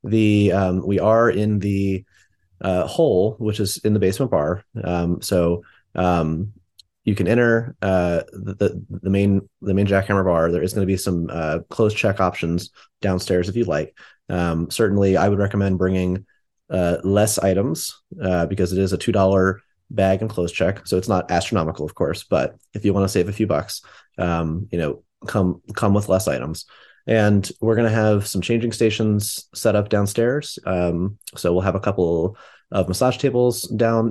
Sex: male